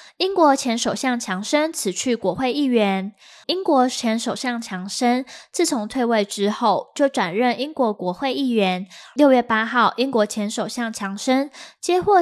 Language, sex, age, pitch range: Chinese, female, 20-39, 210-285 Hz